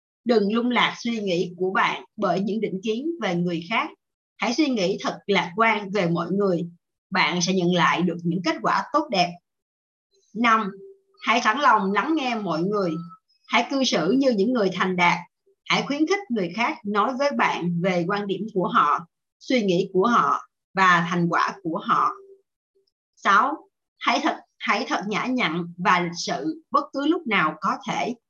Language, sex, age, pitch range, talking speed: Vietnamese, female, 20-39, 180-255 Hz, 185 wpm